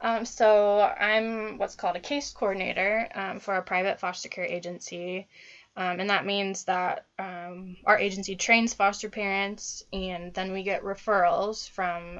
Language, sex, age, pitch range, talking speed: English, female, 10-29, 180-210 Hz, 155 wpm